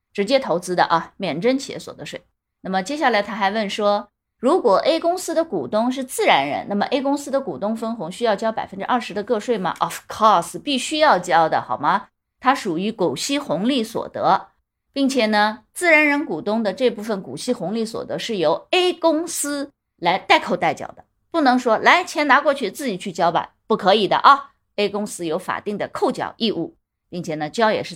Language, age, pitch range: Chinese, 20-39, 190-275 Hz